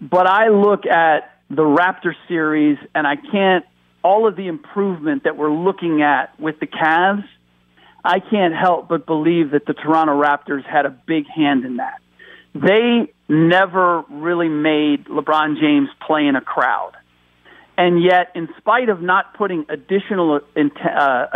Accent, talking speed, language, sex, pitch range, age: American, 155 wpm, English, male, 145-190 Hz, 50-69